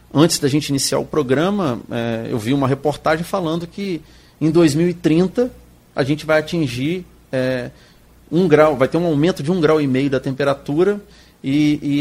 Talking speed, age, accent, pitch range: 175 wpm, 40-59, Brazilian, 125-170 Hz